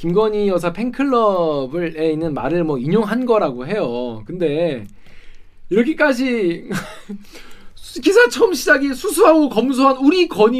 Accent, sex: native, male